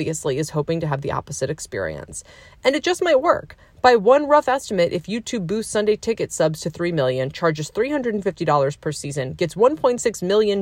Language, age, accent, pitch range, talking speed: English, 30-49, American, 150-215 Hz, 190 wpm